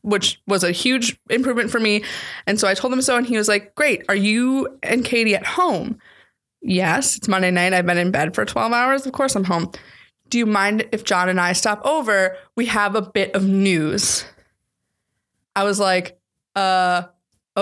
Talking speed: 200 wpm